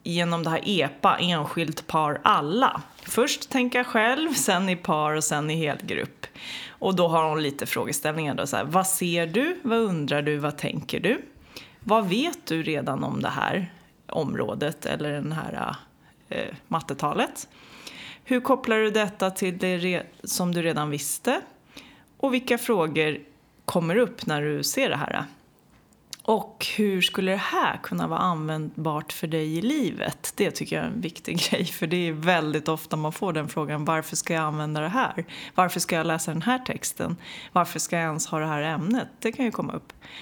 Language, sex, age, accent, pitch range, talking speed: Swedish, female, 30-49, native, 155-220 Hz, 175 wpm